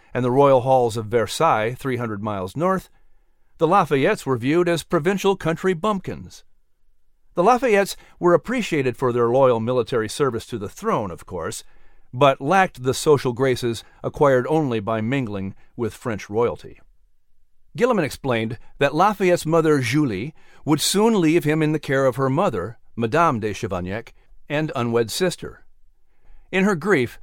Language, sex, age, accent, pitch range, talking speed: English, male, 50-69, American, 120-170 Hz, 150 wpm